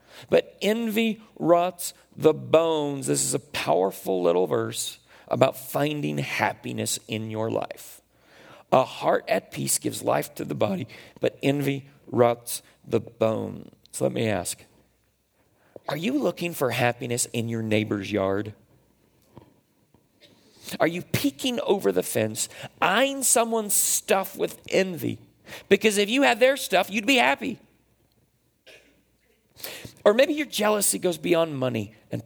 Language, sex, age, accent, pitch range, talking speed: English, male, 40-59, American, 105-175 Hz, 135 wpm